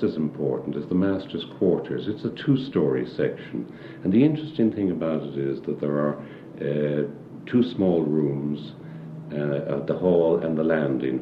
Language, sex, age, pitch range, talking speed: English, male, 60-79, 65-90 Hz, 165 wpm